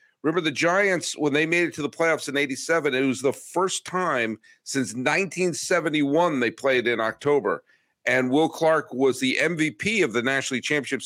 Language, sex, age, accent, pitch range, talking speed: English, male, 50-69, American, 115-165 Hz, 180 wpm